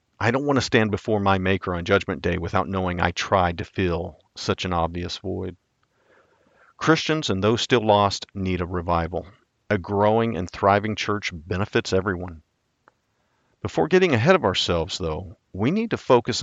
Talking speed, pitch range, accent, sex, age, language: 170 wpm, 90-115 Hz, American, male, 50-69, English